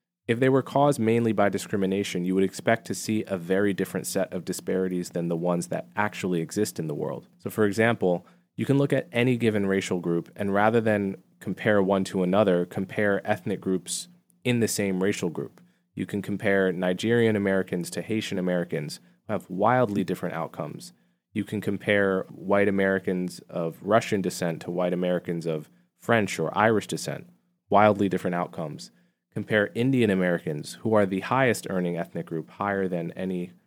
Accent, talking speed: American, 175 wpm